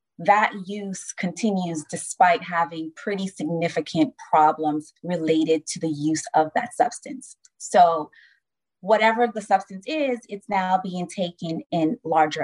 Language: English